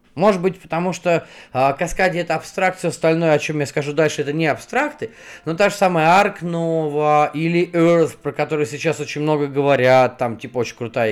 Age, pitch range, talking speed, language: 30-49, 130-175 Hz, 190 wpm, Russian